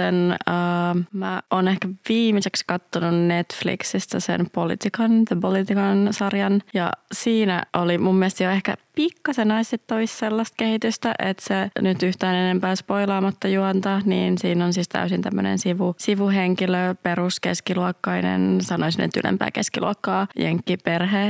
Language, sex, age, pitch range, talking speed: Finnish, female, 20-39, 175-215 Hz, 125 wpm